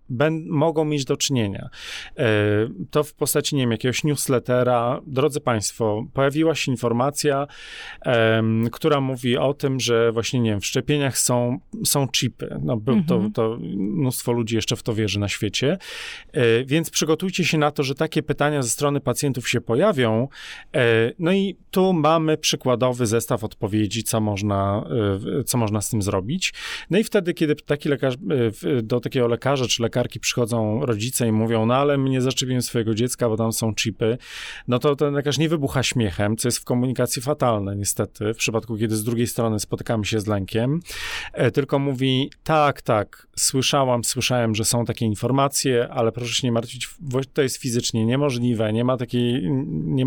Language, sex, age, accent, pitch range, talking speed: Polish, male, 30-49, native, 115-145 Hz, 170 wpm